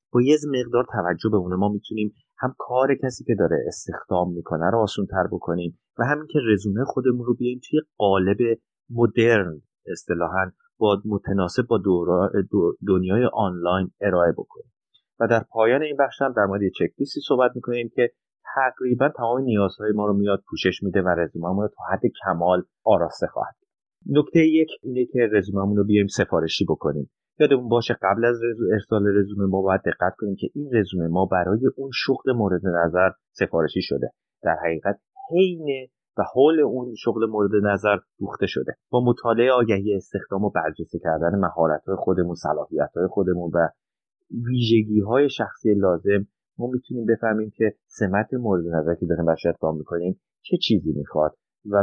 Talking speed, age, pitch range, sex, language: 160 wpm, 30-49, 95-120 Hz, male, Persian